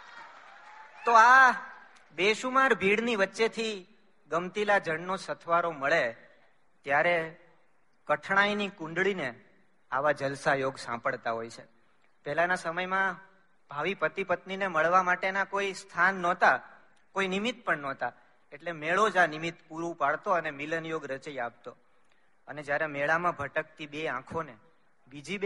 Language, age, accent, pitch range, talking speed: Gujarati, 40-59, native, 150-200 Hz, 50 wpm